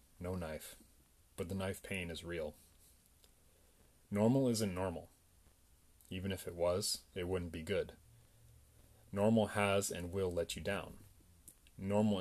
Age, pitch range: 30-49, 85-100 Hz